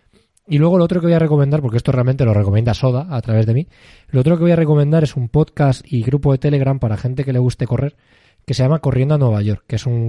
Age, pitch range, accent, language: 20-39, 110-135 Hz, Spanish, Spanish